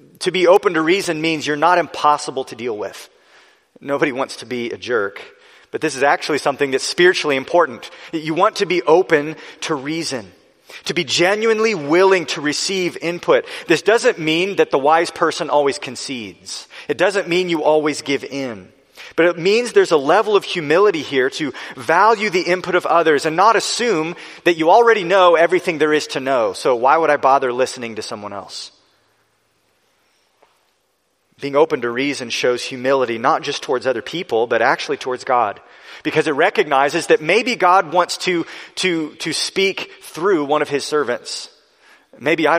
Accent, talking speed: American, 175 wpm